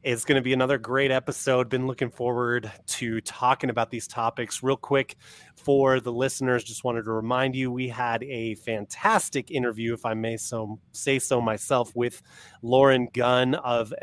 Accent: American